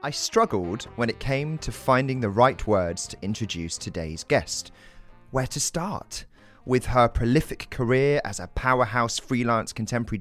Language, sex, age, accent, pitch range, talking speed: English, male, 30-49, British, 95-125 Hz, 155 wpm